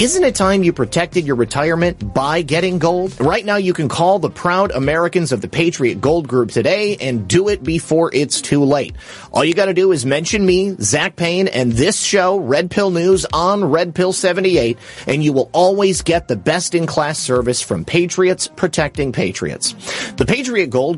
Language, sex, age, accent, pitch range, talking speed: English, male, 30-49, American, 125-180 Hz, 190 wpm